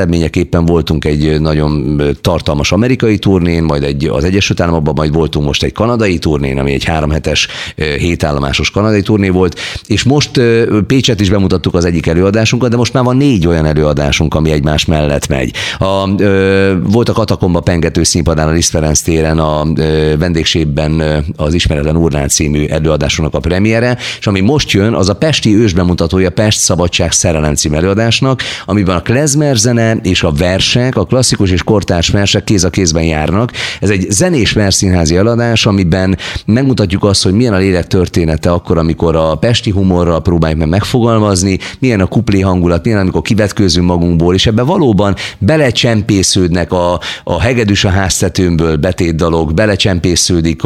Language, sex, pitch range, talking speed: Hungarian, male, 80-105 Hz, 160 wpm